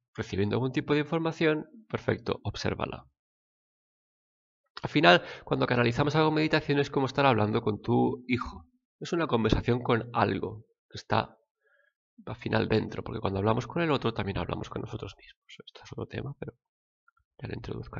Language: Spanish